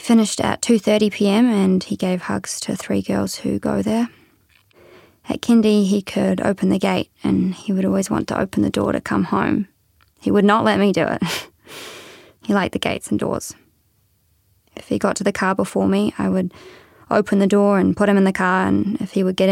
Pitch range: 165-205 Hz